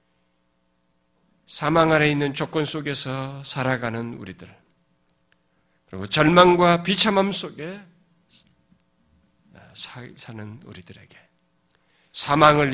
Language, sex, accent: Korean, male, native